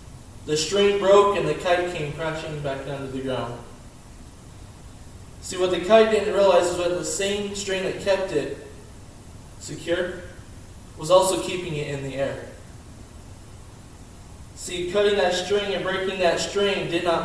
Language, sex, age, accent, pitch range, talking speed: English, male, 20-39, American, 120-180 Hz, 155 wpm